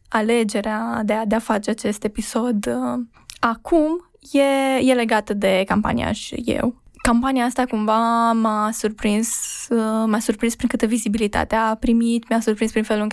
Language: Romanian